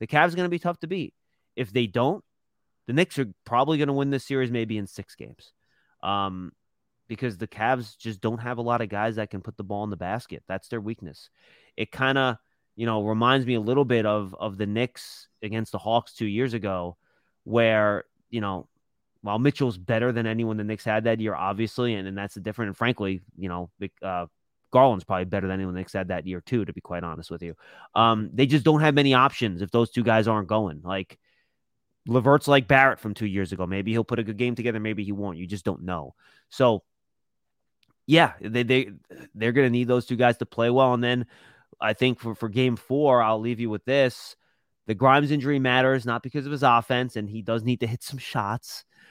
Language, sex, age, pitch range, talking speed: English, male, 30-49, 105-125 Hz, 225 wpm